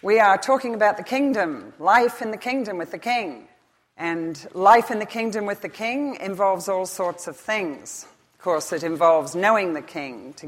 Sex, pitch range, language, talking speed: female, 165-215 Hz, English, 195 wpm